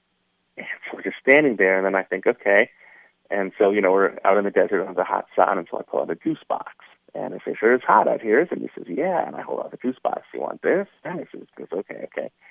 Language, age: English, 30-49